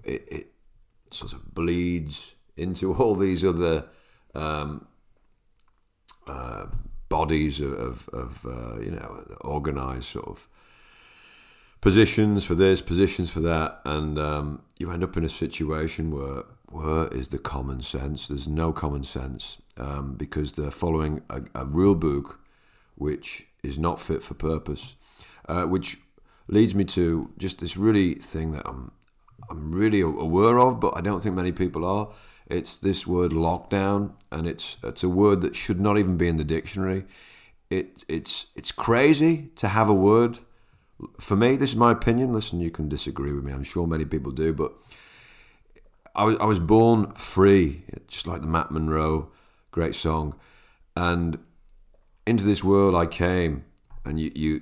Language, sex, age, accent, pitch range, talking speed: English, male, 50-69, British, 75-100 Hz, 160 wpm